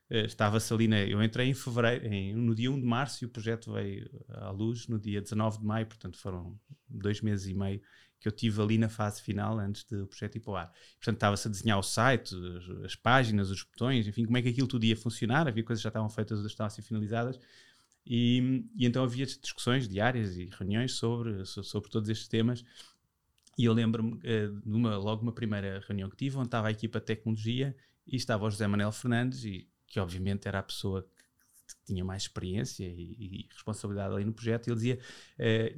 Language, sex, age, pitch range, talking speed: Portuguese, male, 20-39, 105-125 Hz, 210 wpm